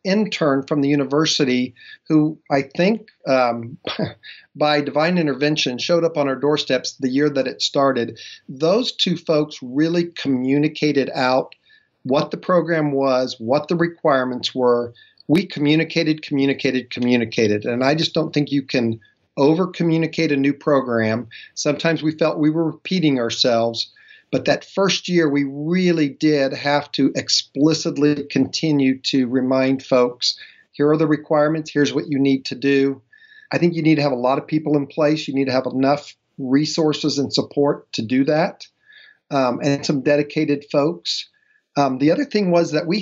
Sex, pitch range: male, 135-160 Hz